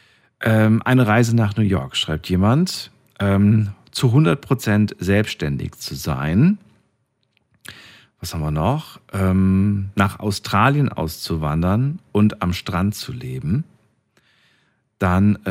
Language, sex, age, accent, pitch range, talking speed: German, male, 40-59, German, 90-120 Hz, 95 wpm